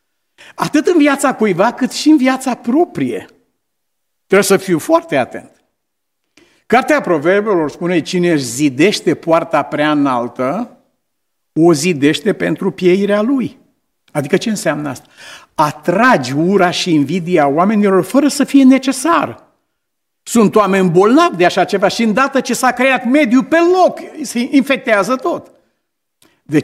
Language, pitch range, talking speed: Romanian, 170-255 Hz, 135 wpm